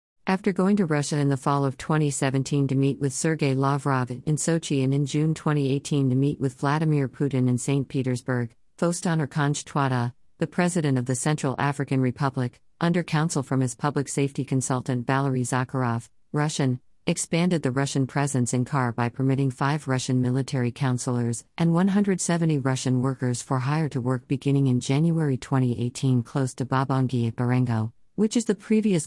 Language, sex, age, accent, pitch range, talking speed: English, female, 50-69, American, 130-155 Hz, 165 wpm